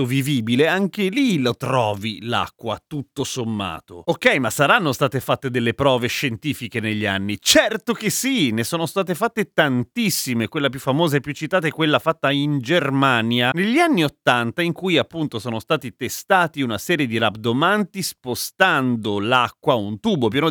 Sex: male